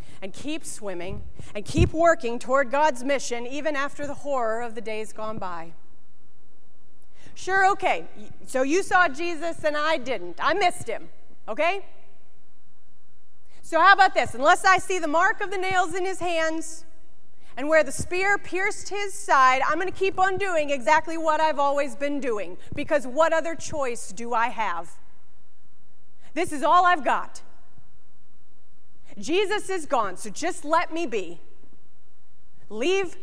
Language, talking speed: English, 155 wpm